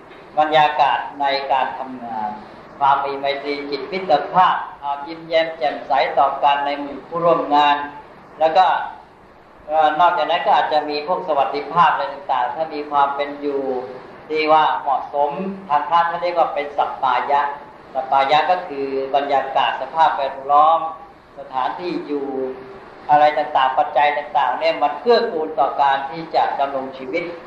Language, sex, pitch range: English, female, 135-165 Hz